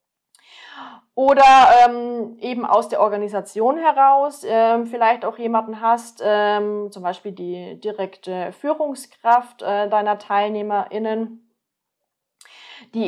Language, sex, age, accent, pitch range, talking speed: German, female, 30-49, German, 190-235 Hz, 100 wpm